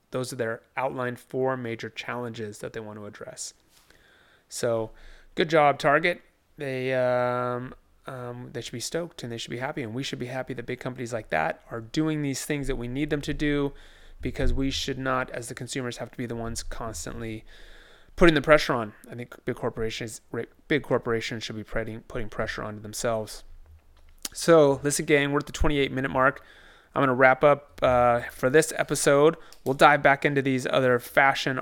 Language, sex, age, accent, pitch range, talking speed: English, male, 30-49, American, 120-150 Hz, 190 wpm